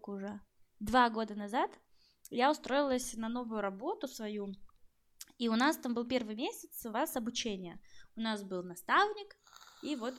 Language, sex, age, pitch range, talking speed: Russian, female, 20-39, 215-280 Hz, 155 wpm